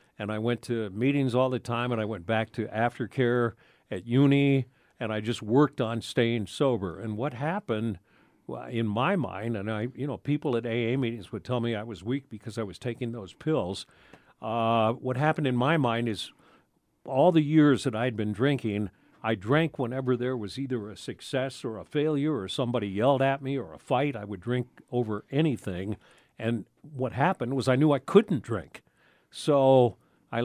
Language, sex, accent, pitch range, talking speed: English, male, American, 110-135 Hz, 195 wpm